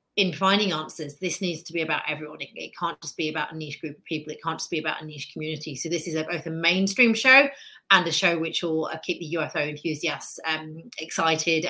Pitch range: 155-180 Hz